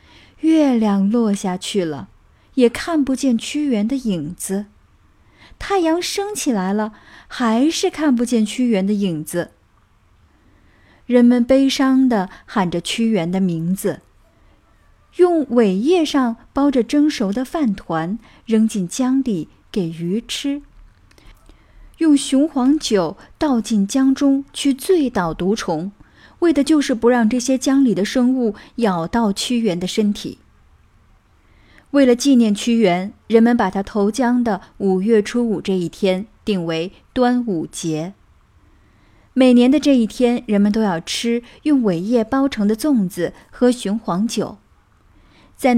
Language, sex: Chinese, female